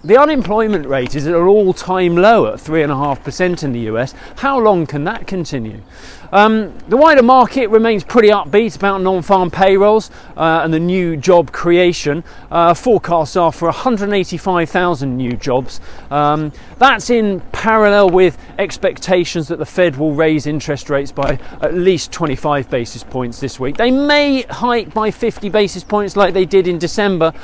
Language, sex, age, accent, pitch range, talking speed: English, male, 40-59, British, 140-185 Hz, 160 wpm